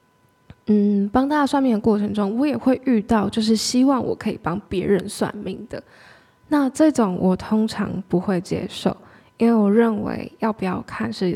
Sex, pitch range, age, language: female, 195-245 Hz, 10-29, Chinese